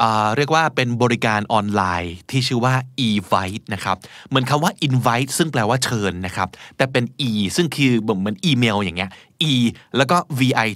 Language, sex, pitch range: Thai, male, 110-160 Hz